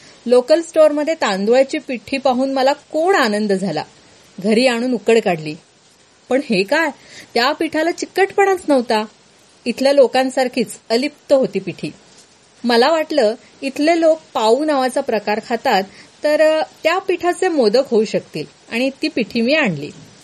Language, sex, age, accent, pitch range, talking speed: Marathi, female, 30-49, native, 215-280 Hz, 135 wpm